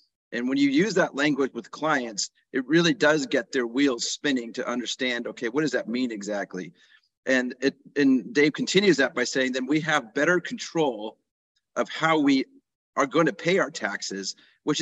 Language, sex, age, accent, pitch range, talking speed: English, male, 40-59, American, 110-140 Hz, 185 wpm